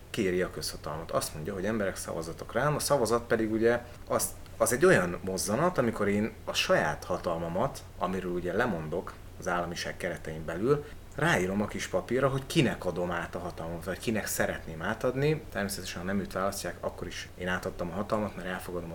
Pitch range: 90-110 Hz